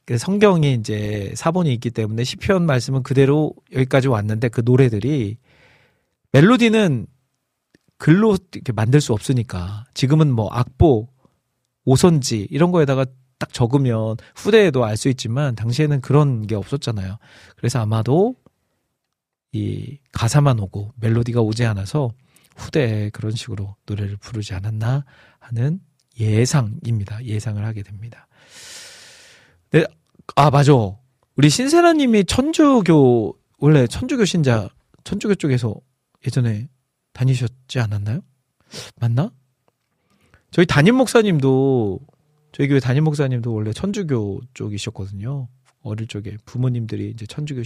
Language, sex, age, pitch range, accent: Korean, male, 40-59, 110-145 Hz, native